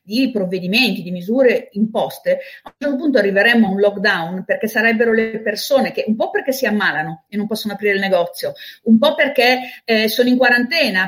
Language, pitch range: Italian, 195-240 Hz